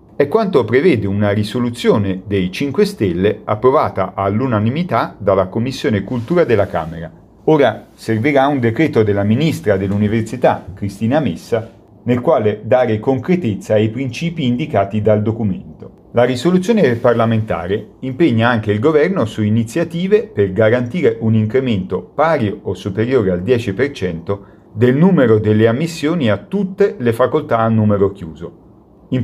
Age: 40-59